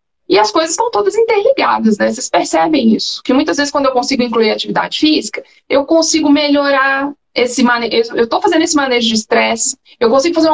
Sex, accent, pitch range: female, Brazilian, 235-310 Hz